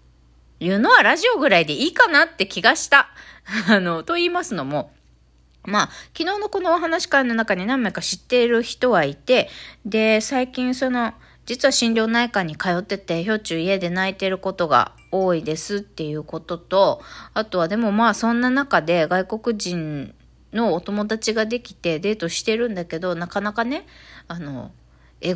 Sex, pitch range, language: female, 160-235 Hz, Japanese